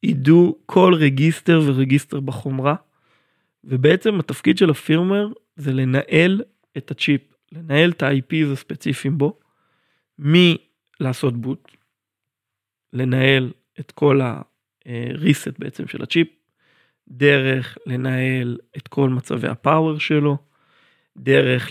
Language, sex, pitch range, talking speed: Hebrew, male, 130-175 Hz, 95 wpm